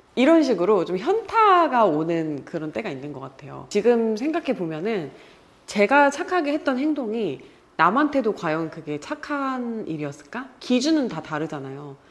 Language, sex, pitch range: Korean, female, 160-265 Hz